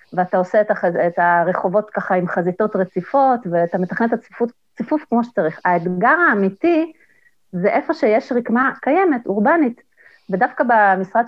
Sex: female